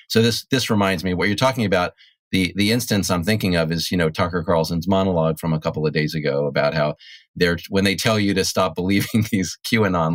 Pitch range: 85-110 Hz